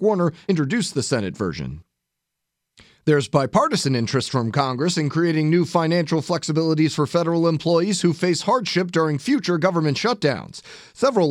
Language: English